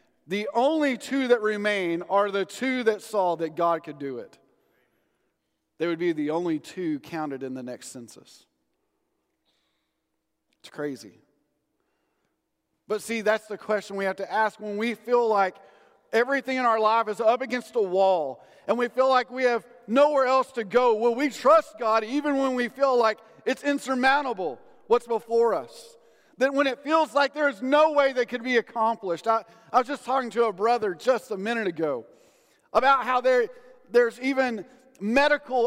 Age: 40-59